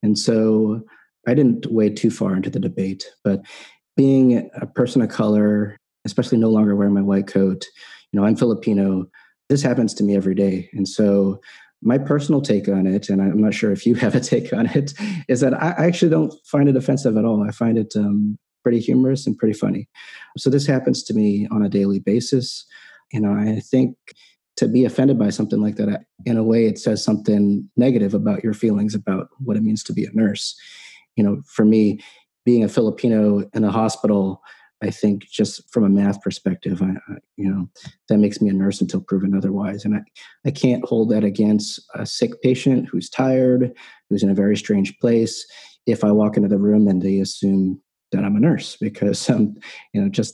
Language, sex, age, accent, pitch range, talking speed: English, male, 30-49, American, 100-120 Hz, 205 wpm